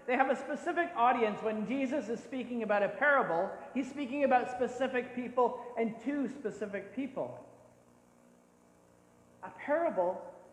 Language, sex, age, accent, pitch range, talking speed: English, male, 40-59, American, 175-255 Hz, 130 wpm